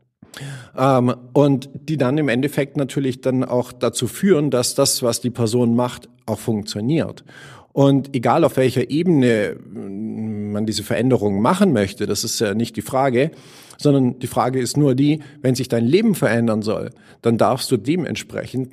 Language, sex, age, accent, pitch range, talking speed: German, male, 50-69, German, 115-145 Hz, 160 wpm